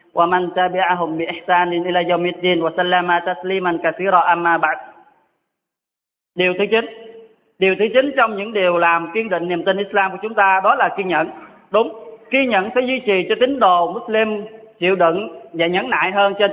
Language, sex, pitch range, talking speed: Vietnamese, male, 185-230 Hz, 140 wpm